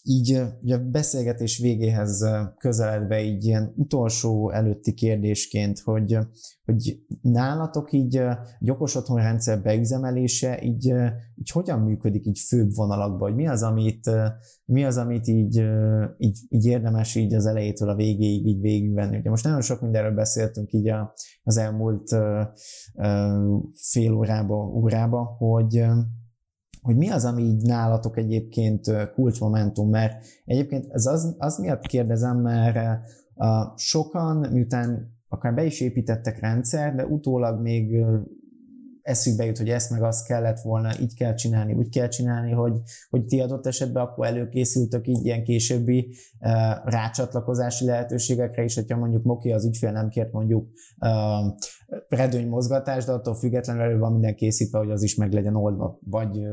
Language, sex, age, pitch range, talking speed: Hungarian, male, 20-39, 105-125 Hz, 140 wpm